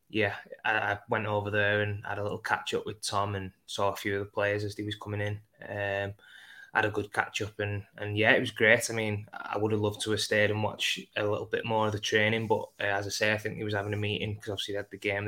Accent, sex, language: British, male, English